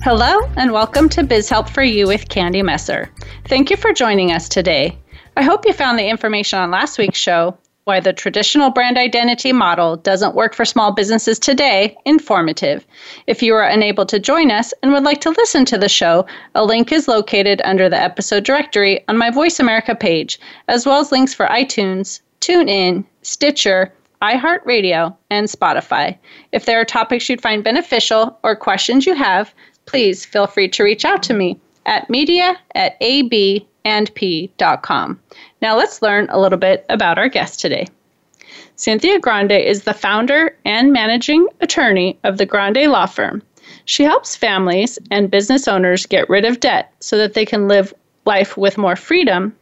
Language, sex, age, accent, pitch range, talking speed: English, female, 30-49, American, 200-275 Hz, 170 wpm